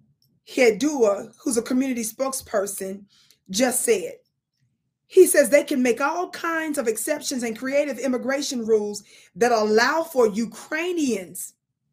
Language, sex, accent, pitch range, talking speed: English, female, American, 220-290 Hz, 120 wpm